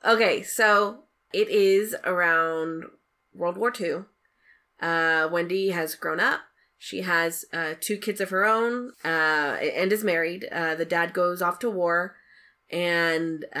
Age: 20-39